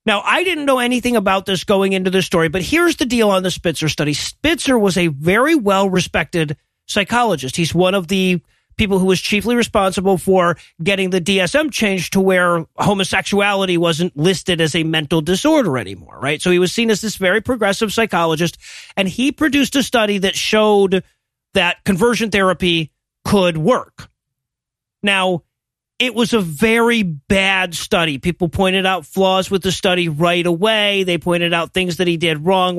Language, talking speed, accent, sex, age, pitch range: English, 175 wpm, American, male, 40-59, 175-220 Hz